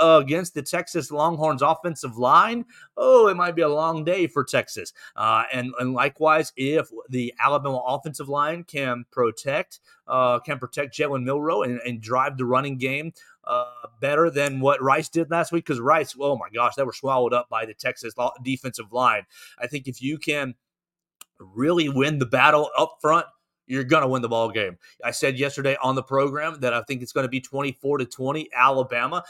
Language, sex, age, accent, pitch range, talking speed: English, male, 30-49, American, 130-165 Hz, 190 wpm